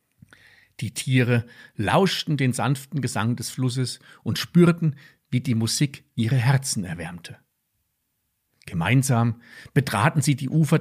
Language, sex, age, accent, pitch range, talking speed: German, male, 50-69, German, 115-145 Hz, 115 wpm